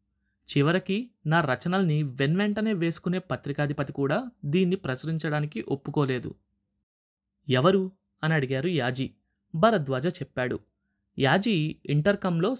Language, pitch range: Telugu, 130-175 Hz